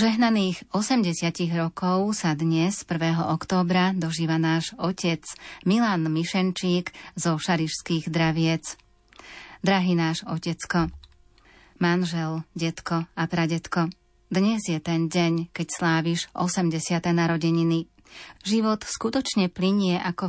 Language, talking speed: Slovak, 100 wpm